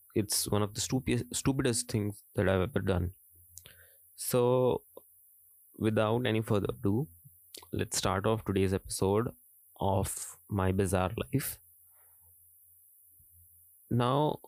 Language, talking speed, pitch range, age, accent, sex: Hindi, 105 wpm, 90-110 Hz, 20-39, native, male